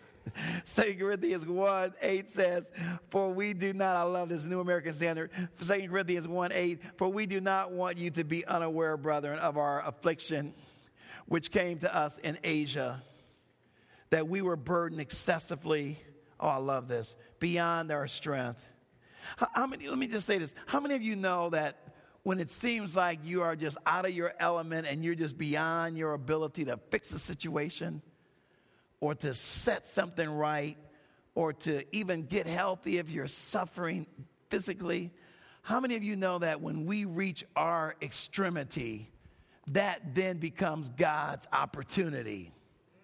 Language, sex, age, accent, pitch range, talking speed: English, male, 50-69, American, 155-195 Hz, 160 wpm